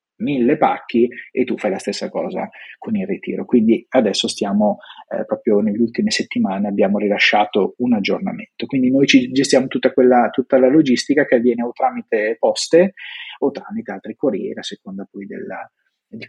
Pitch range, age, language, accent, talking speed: 125-185 Hz, 30-49, Italian, native, 165 wpm